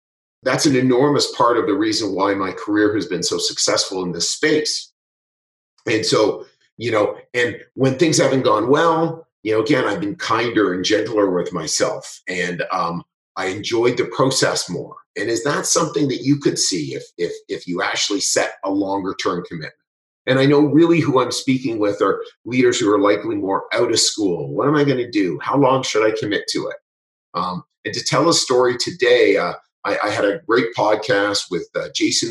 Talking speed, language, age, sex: 200 wpm, English, 30-49, male